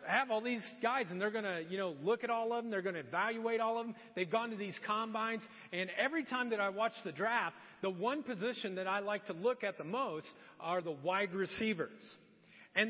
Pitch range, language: 210-280 Hz, English